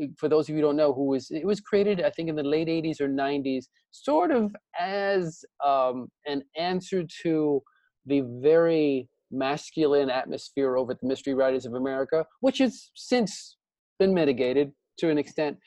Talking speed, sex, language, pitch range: 175 wpm, male, English, 135-170 Hz